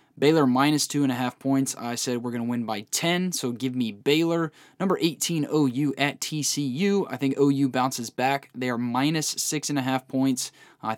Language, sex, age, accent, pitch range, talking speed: English, male, 20-39, American, 120-150 Hz, 175 wpm